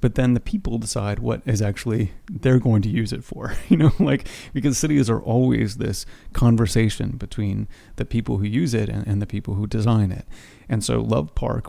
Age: 30-49